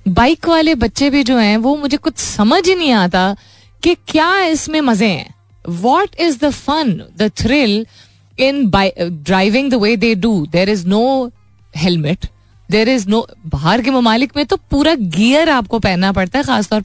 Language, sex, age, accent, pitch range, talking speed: Hindi, female, 30-49, native, 165-240 Hz, 180 wpm